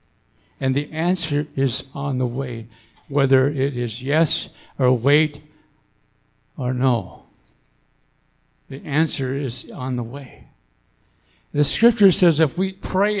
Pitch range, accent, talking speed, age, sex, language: 135-210 Hz, American, 125 wpm, 60-79, male, English